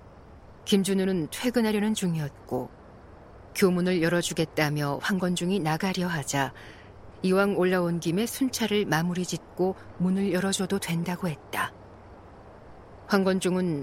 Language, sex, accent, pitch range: Korean, female, native, 140-195 Hz